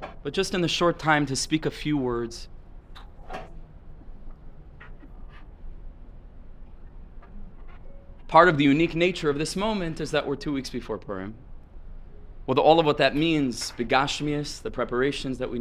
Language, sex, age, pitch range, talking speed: English, male, 20-39, 105-140 Hz, 140 wpm